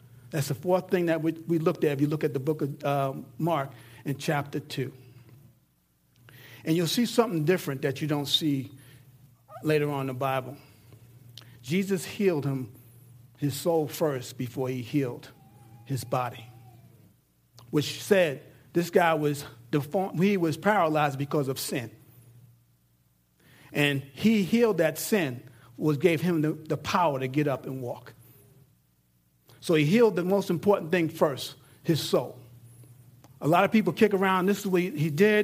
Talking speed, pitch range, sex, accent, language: 160 wpm, 130-195 Hz, male, American, English